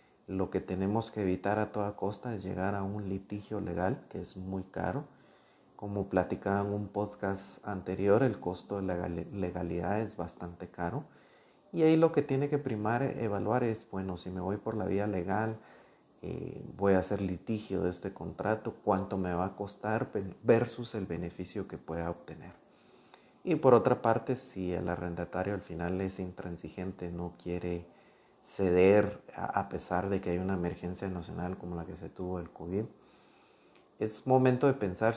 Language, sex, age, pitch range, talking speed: Spanish, male, 40-59, 95-110 Hz, 170 wpm